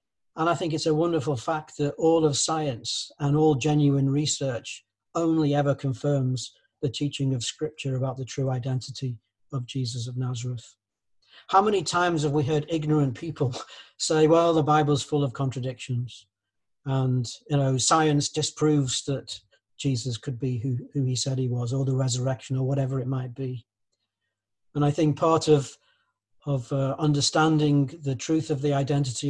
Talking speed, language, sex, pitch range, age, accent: 165 wpm, English, male, 125-150 Hz, 40-59, British